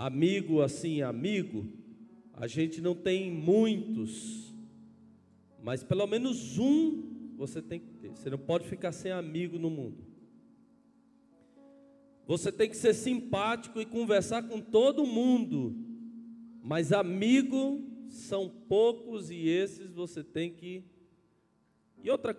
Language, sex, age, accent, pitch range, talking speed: Portuguese, male, 40-59, Brazilian, 145-230 Hz, 120 wpm